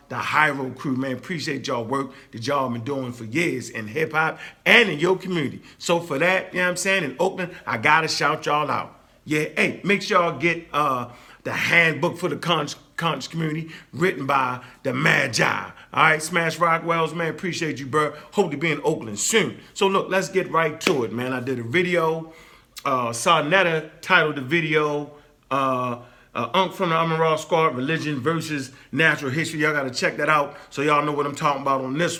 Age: 40-59